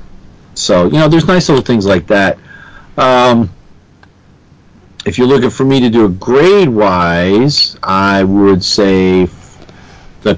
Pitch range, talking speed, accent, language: 95-130 Hz, 135 wpm, American, English